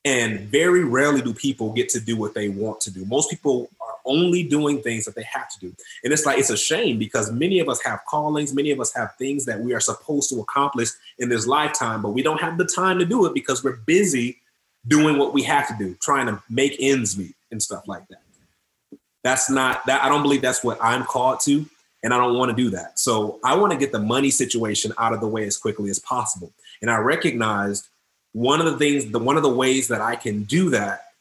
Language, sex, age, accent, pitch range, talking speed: English, male, 30-49, American, 115-150 Hz, 245 wpm